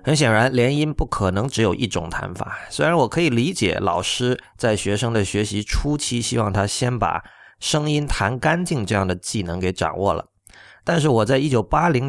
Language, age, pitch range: Chinese, 30-49, 100-125 Hz